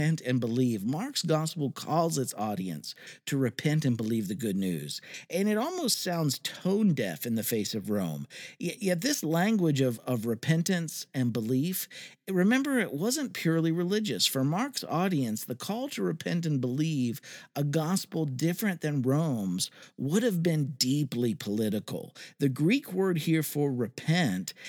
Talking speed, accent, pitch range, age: 155 wpm, American, 130-190 Hz, 50-69